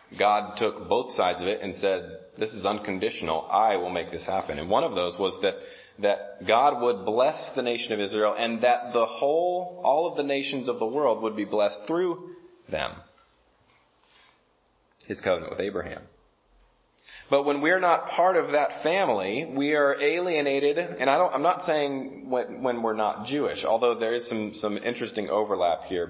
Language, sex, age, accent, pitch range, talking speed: English, male, 30-49, American, 95-145 Hz, 185 wpm